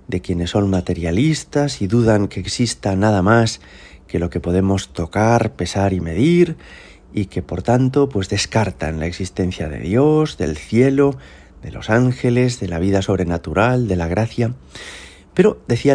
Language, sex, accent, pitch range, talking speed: Spanish, male, Spanish, 90-125 Hz, 160 wpm